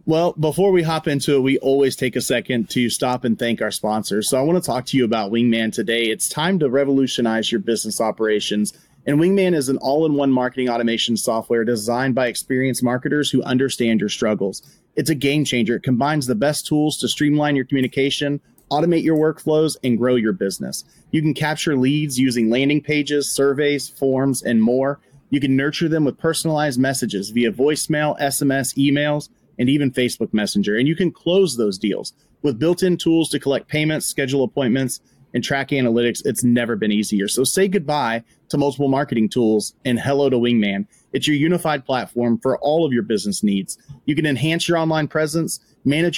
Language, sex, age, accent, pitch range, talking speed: English, male, 30-49, American, 120-150 Hz, 190 wpm